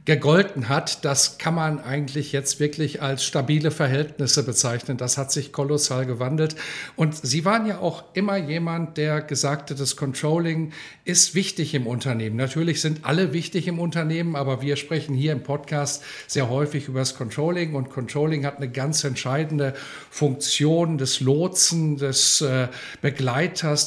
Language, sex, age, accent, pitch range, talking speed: German, male, 50-69, German, 140-170 Hz, 155 wpm